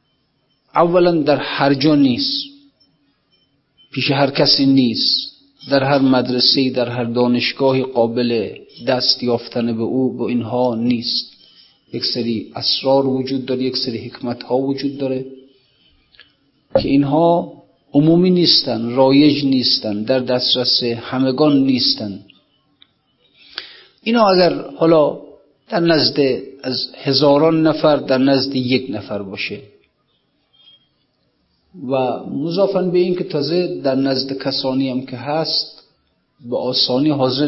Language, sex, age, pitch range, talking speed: Persian, male, 50-69, 125-155 Hz, 115 wpm